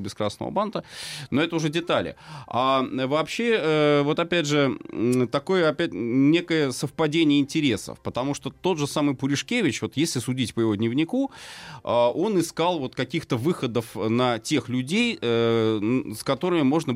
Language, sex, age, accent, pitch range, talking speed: Russian, male, 30-49, native, 105-145 Hz, 140 wpm